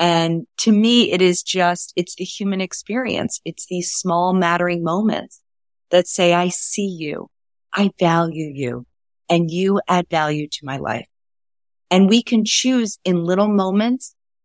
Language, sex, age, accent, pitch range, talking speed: English, female, 30-49, American, 165-200 Hz, 155 wpm